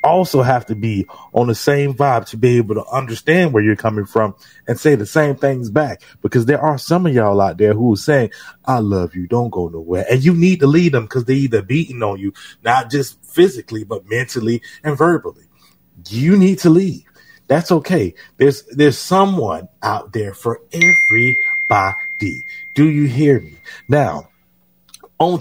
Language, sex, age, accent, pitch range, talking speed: English, male, 30-49, American, 95-150 Hz, 185 wpm